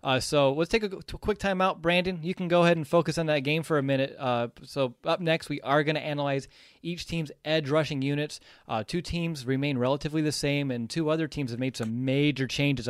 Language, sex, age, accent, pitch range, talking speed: English, male, 20-39, American, 120-150 Hz, 235 wpm